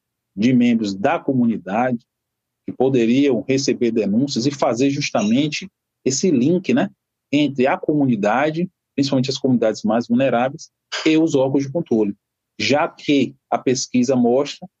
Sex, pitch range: male, 125-155 Hz